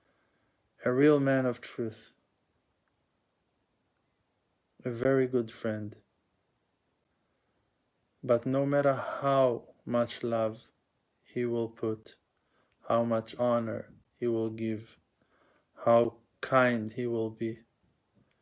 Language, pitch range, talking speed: English, 115-125 Hz, 95 wpm